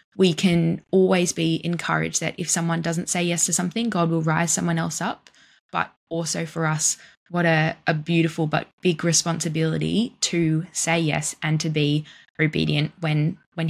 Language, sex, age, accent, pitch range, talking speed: English, female, 10-29, Australian, 160-185 Hz, 170 wpm